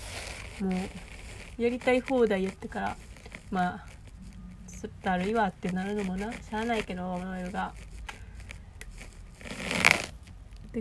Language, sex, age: Japanese, female, 20-39